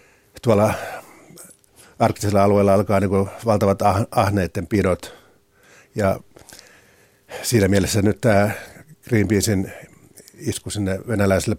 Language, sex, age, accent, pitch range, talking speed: Finnish, male, 50-69, native, 95-110 Hz, 85 wpm